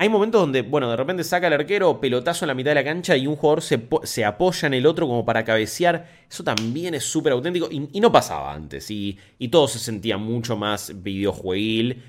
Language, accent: Spanish, Argentinian